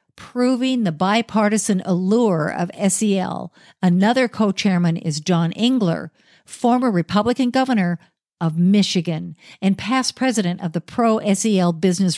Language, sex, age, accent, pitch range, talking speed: English, female, 50-69, American, 180-235 Hz, 115 wpm